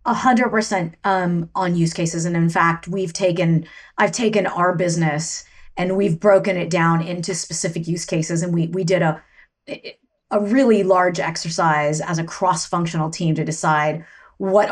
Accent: American